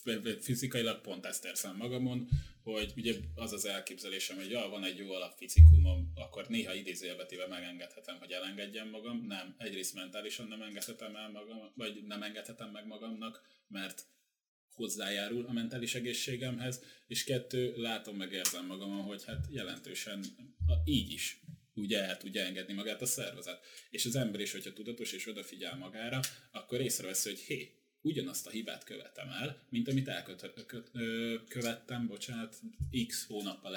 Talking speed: 155 wpm